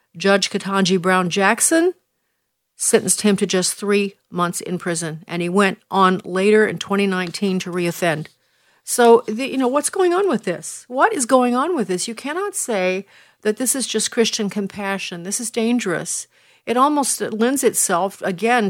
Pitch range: 185-220 Hz